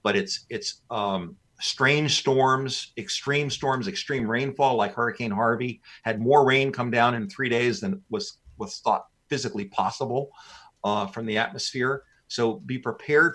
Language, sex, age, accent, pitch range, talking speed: English, male, 50-69, American, 120-160 Hz, 155 wpm